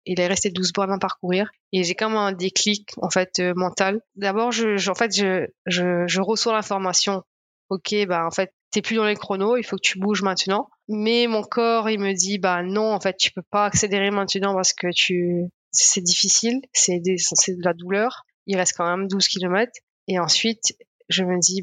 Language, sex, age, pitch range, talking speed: French, female, 20-39, 185-210 Hz, 215 wpm